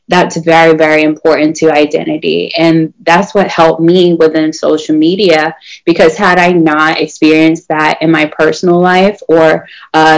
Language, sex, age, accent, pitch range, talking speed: English, female, 20-39, American, 155-175 Hz, 155 wpm